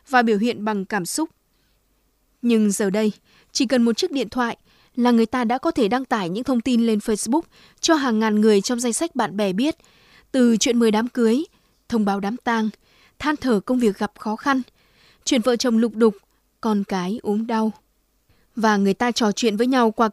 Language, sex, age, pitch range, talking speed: Vietnamese, female, 20-39, 215-255 Hz, 210 wpm